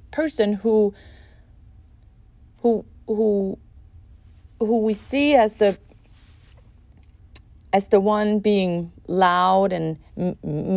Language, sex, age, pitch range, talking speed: English, female, 30-49, 180-235 Hz, 90 wpm